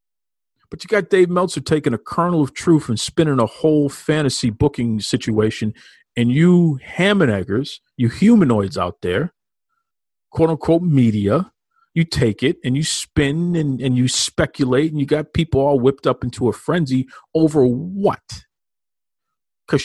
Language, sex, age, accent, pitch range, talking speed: English, male, 40-59, American, 120-165 Hz, 150 wpm